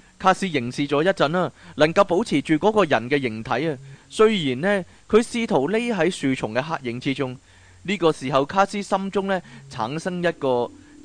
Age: 20-39